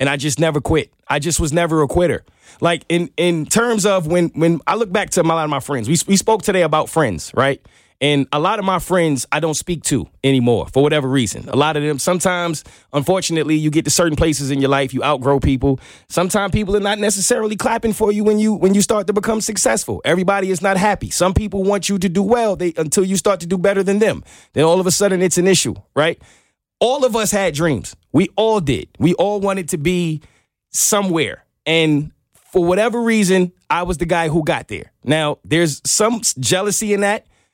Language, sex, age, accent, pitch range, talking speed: English, male, 30-49, American, 150-205 Hz, 225 wpm